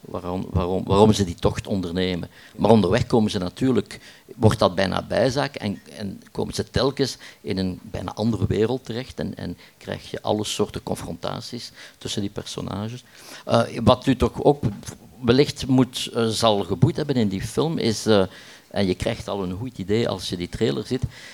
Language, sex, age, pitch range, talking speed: Dutch, male, 50-69, 100-125 Hz, 185 wpm